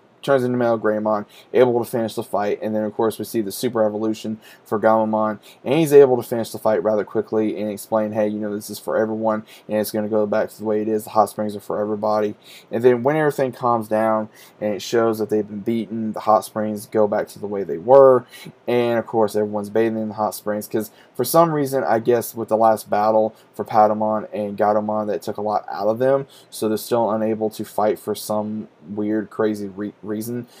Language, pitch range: English, 105-120 Hz